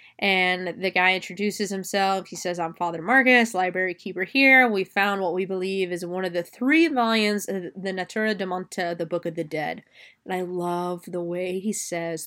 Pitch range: 180-215 Hz